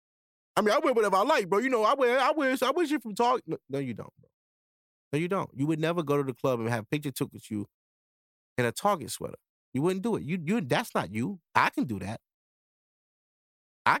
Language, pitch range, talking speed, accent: English, 120-180 Hz, 255 wpm, American